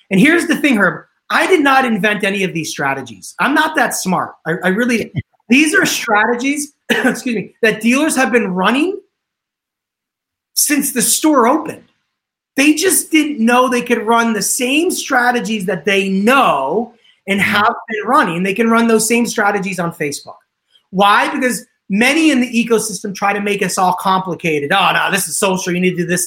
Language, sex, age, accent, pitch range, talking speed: English, male, 30-49, American, 185-240 Hz, 185 wpm